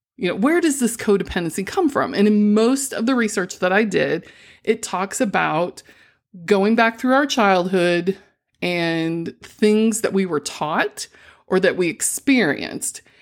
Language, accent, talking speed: English, American, 160 wpm